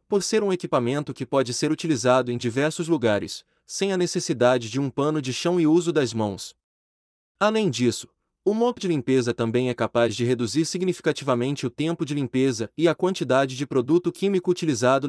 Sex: male